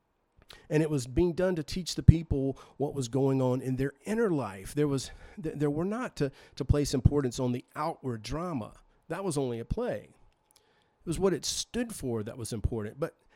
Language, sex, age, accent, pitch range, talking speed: English, male, 40-59, American, 120-155 Hz, 200 wpm